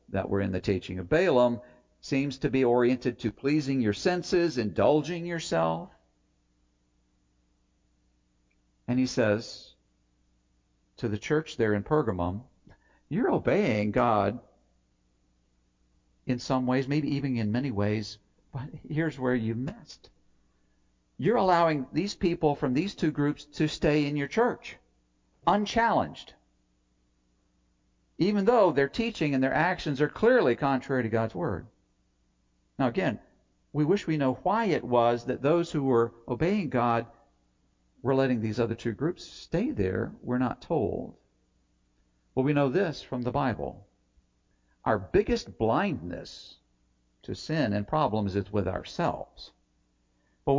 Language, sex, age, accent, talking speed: English, male, 50-69, American, 135 wpm